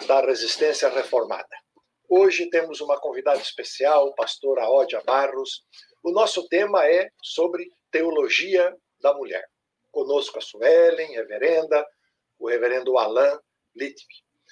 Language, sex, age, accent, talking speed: Portuguese, male, 60-79, Brazilian, 120 wpm